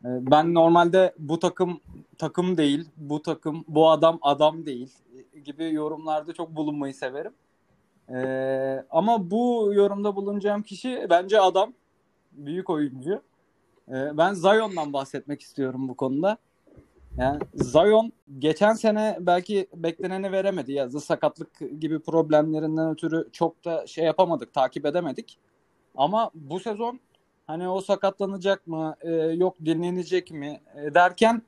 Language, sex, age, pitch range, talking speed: Turkish, male, 30-49, 150-195 Hz, 125 wpm